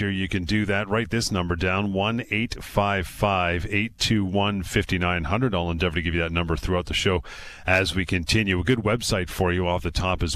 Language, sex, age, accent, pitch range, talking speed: English, male, 40-59, American, 95-115 Hz, 180 wpm